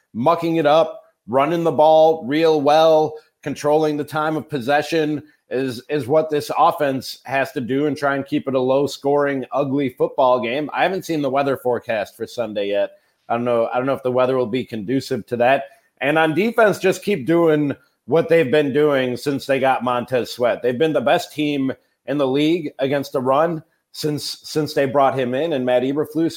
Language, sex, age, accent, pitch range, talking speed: English, male, 30-49, American, 130-155 Hz, 205 wpm